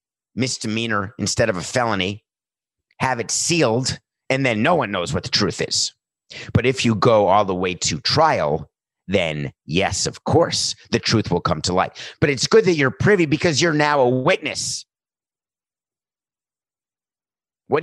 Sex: male